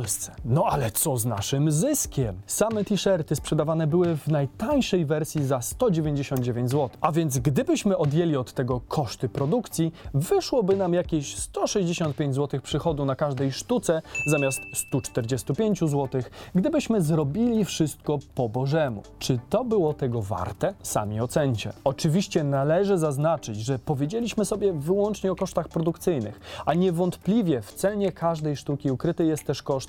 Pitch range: 135-185 Hz